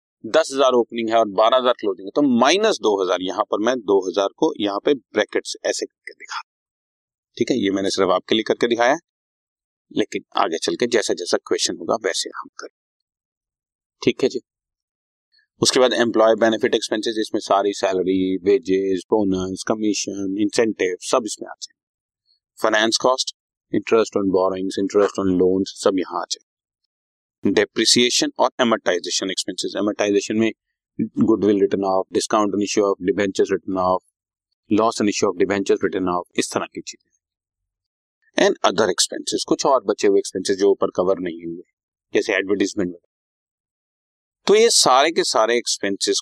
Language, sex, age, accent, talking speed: Hindi, male, 30-49, native, 120 wpm